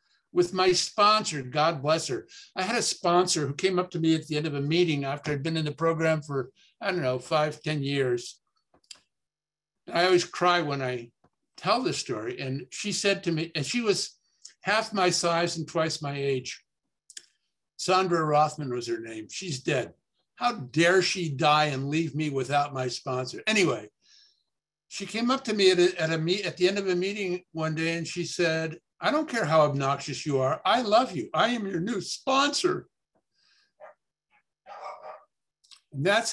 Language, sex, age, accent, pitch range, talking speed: English, male, 60-79, American, 155-210 Hz, 185 wpm